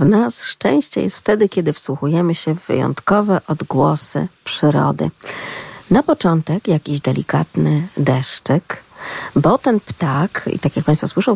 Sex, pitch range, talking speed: female, 150-200 Hz, 130 wpm